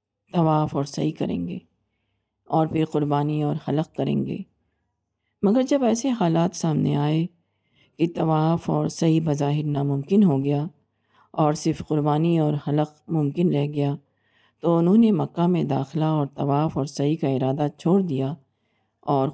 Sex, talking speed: female, 150 wpm